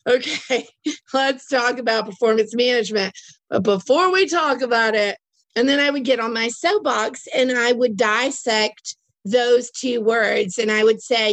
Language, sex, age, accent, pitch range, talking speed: English, female, 30-49, American, 225-270 Hz, 165 wpm